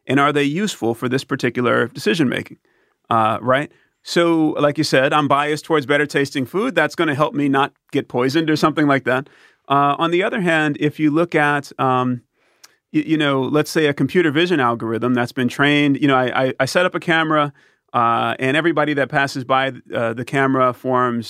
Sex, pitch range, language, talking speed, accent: male, 125-150 Hz, English, 195 wpm, American